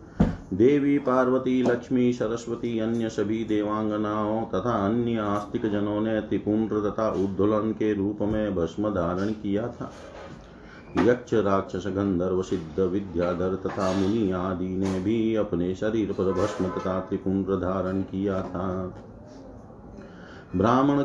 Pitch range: 100-120 Hz